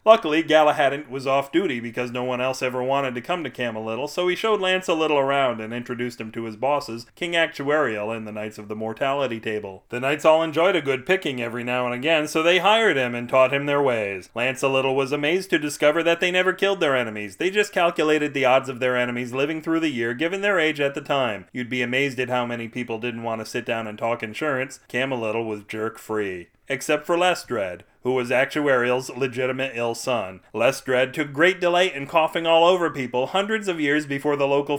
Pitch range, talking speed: 120-155 Hz, 225 wpm